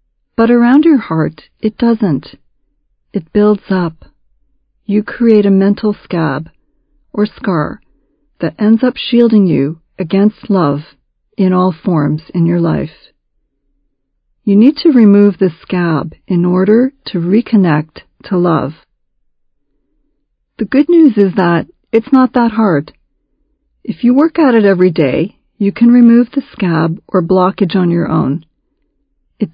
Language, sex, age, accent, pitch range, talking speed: English, female, 40-59, American, 170-225 Hz, 140 wpm